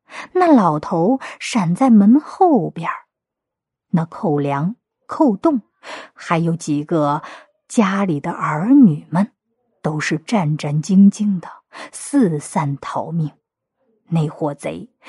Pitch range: 175-280 Hz